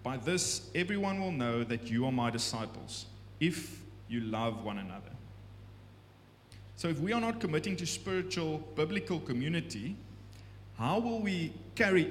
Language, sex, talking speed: English, male, 145 wpm